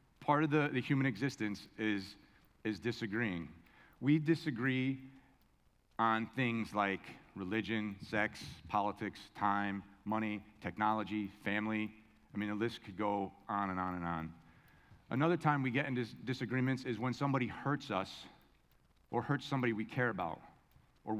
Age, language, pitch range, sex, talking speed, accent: 40-59, English, 105-130 Hz, male, 140 wpm, American